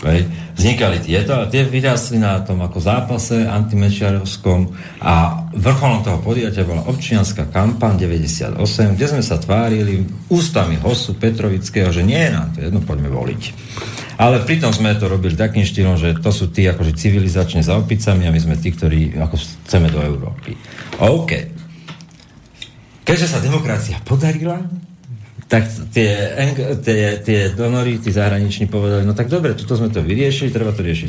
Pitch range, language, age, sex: 95-125 Hz, Slovak, 40-59, male